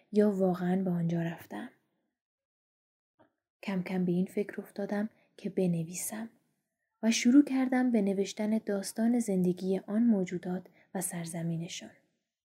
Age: 20-39